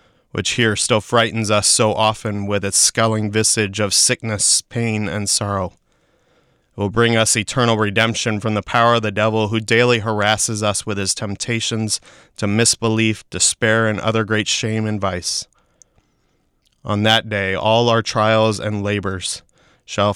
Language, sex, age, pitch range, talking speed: English, male, 30-49, 105-115 Hz, 160 wpm